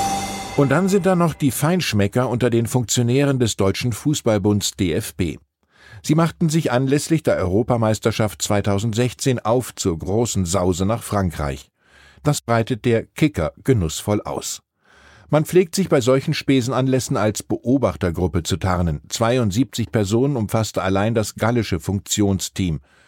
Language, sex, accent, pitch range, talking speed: German, male, German, 95-135 Hz, 130 wpm